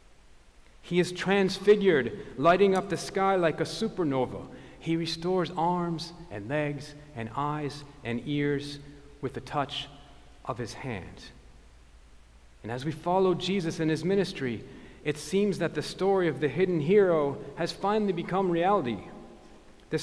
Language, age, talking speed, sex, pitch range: English, 40-59, 140 wpm, male, 125-165 Hz